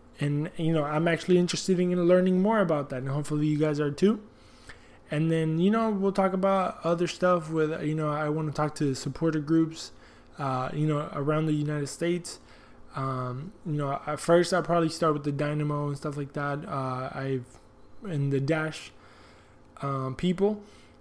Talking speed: 185 wpm